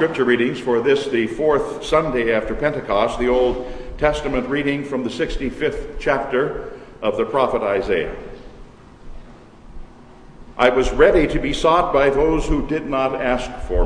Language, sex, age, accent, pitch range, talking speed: English, male, 60-79, American, 130-170 Hz, 145 wpm